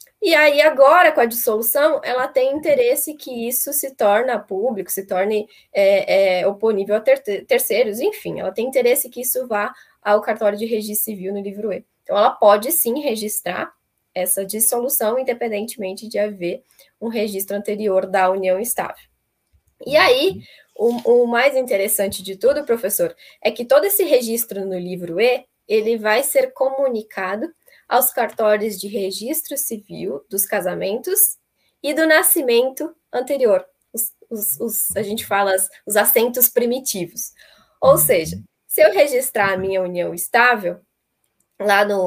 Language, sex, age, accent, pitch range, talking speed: Portuguese, female, 10-29, Brazilian, 200-275 Hz, 140 wpm